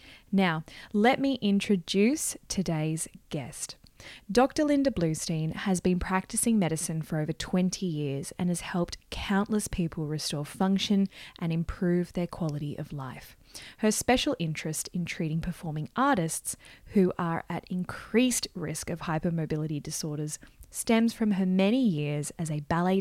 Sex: female